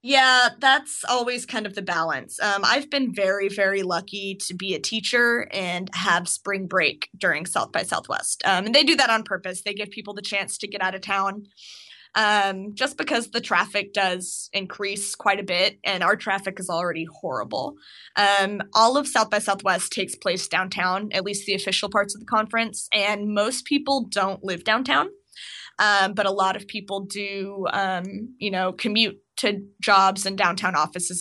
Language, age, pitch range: English, 20-39, 190-215 Hz